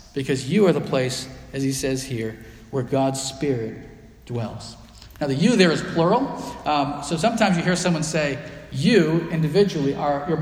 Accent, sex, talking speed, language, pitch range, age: American, male, 175 wpm, English, 135-185 Hz, 40-59